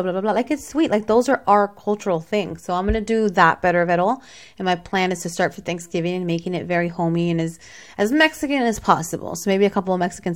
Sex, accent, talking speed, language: female, American, 270 wpm, English